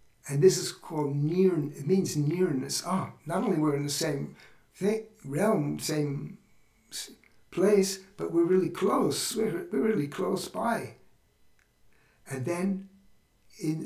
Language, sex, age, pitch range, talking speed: English, male, 60-79, 130-165 Hz, 135 wpm